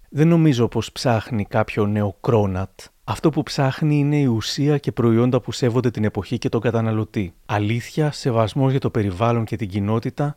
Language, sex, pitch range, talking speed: Greek, male, 110-135 Hz, 175 wpm